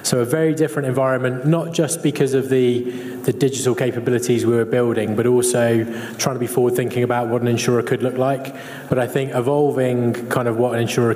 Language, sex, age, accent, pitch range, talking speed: English, male, 20-39, British, 115-130 Hz, 205 wpm